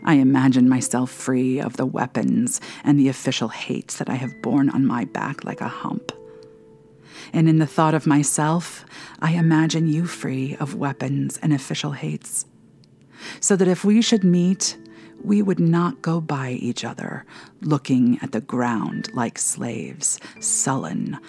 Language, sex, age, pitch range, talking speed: English, female, 40-59, 130-165 Hz, 160 wpm